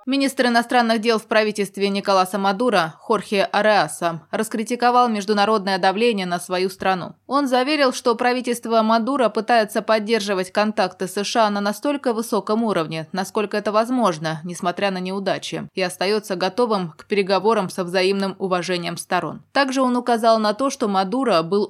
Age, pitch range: 20-39, 185-230 Hz